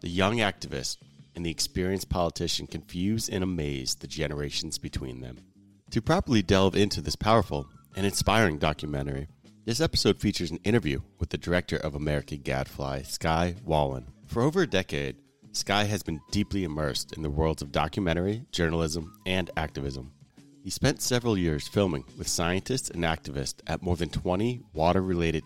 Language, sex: English, male